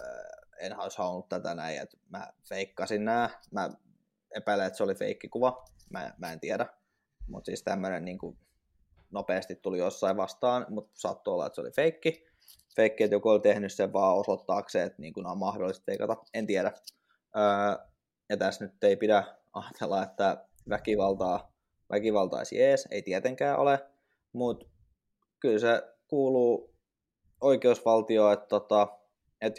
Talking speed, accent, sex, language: 140 wpm, native, male, Finnish